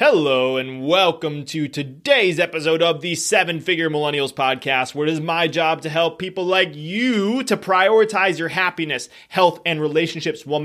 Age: 20-39